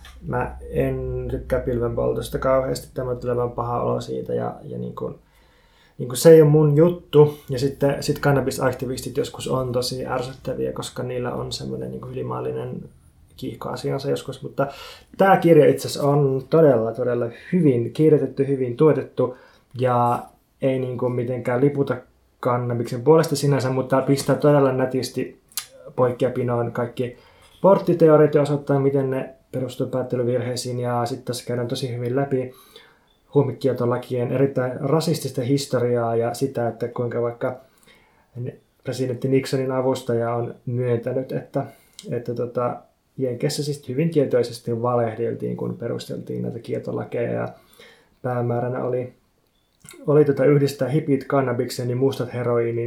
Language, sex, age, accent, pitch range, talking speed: Finnish, male, 20-39, native, 120-140 Hz, 125 wpm